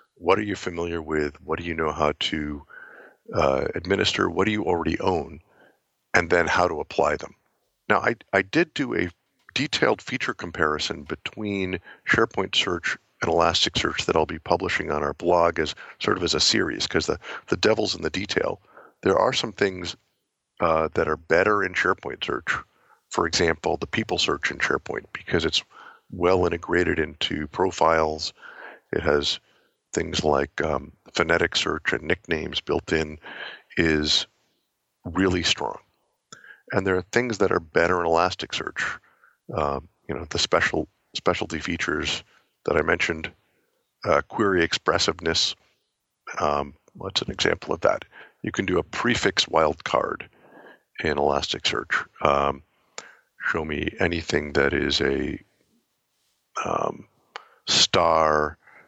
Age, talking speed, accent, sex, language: 50-69, 145 wpm, American, male, English